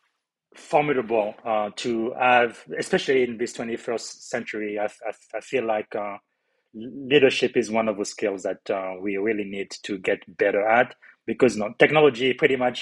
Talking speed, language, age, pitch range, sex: 160 wpm, English, 30-49, 110-130 Hz, male